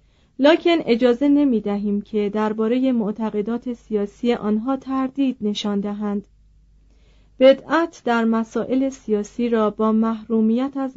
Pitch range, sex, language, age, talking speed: 215-260 Hz, female, Persian, 30-49, 105 wpm